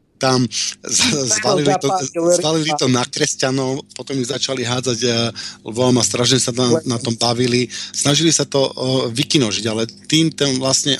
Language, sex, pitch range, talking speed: Slovak, male, 115-135 Hz, 140 wpm